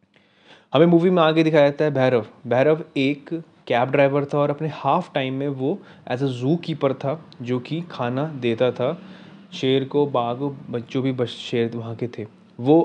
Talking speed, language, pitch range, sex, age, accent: 190 wpm, Hindi, 120-150 Hz, male, 20-39, native